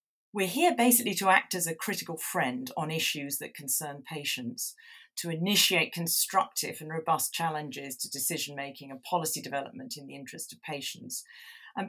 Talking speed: 160 wpm